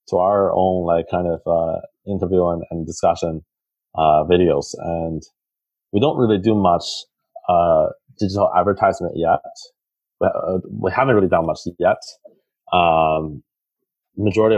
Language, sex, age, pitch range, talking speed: English, male, 30-49, 85-105 Hz, 135 wpm